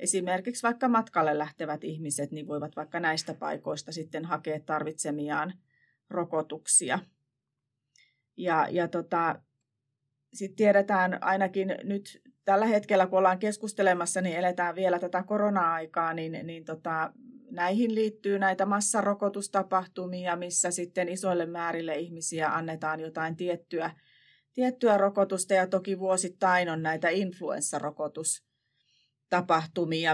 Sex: female